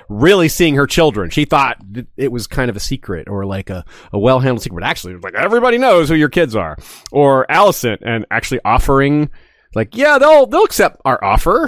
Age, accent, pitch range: 30-49, American, 115-165 Hz